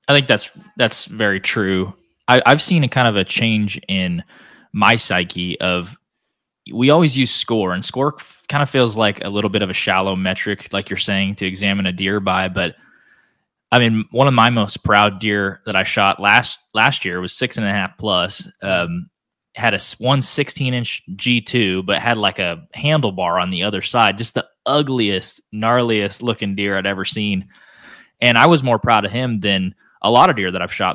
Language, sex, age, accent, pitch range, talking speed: English, male, 20-39, American, 95-120 Hz, 205 wpm